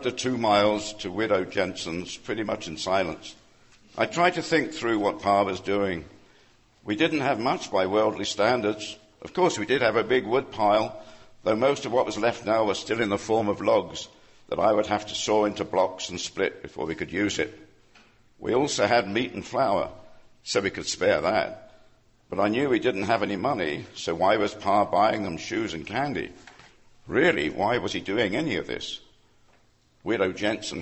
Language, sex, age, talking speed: English, male, 60-79, 200 wpm